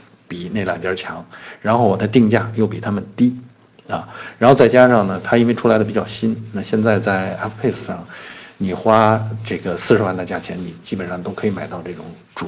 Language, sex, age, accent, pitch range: Chinese, male, 50-69, native, 90-110 Hz